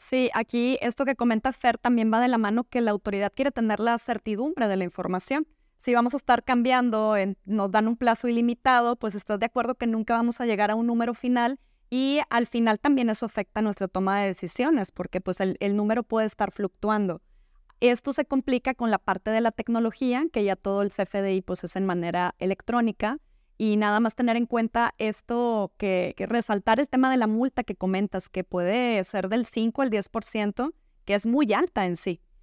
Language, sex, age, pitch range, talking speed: Spanish, female, 20-39, 200-245 Hz, 200 wpm